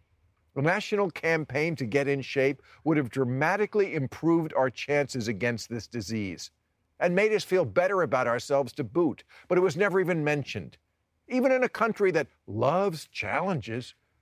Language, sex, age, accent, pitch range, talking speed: English, male, 50-69, American, 100-155 Hz, 160 wpm